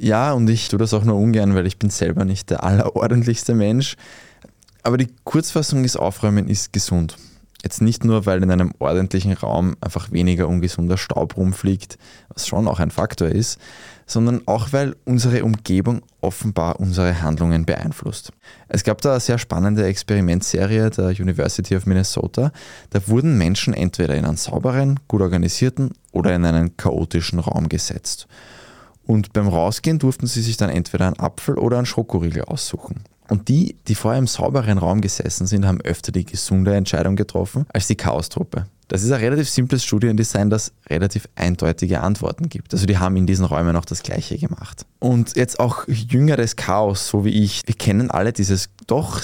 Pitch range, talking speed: 95-120 Hz, 175 wpm